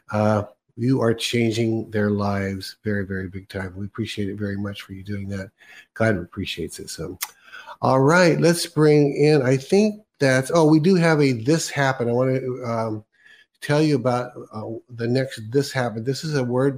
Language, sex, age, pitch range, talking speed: English, male, 50-69, 105-130 Hz, 195 wpm